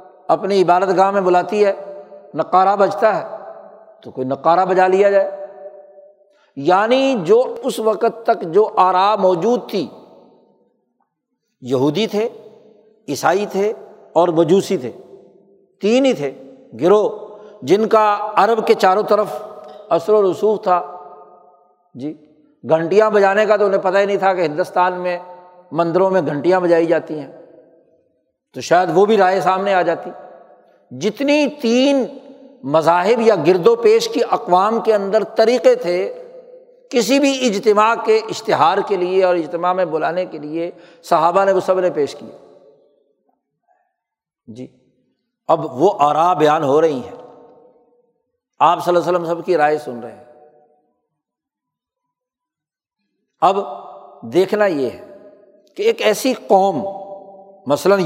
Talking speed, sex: 135 wpm, male